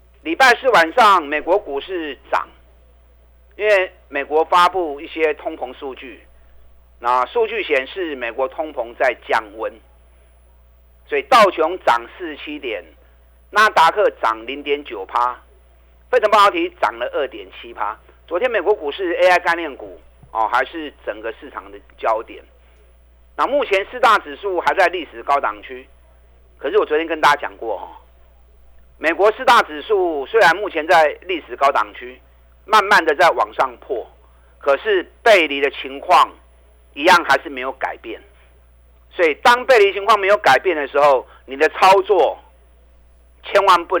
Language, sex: Chinese, male